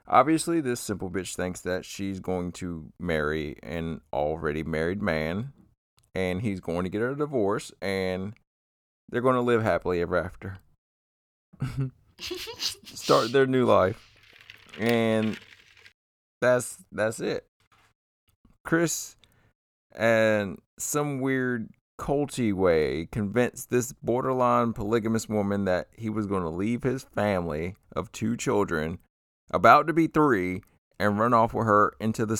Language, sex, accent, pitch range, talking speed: English, male, American, 95-125 Hz, 130 wpm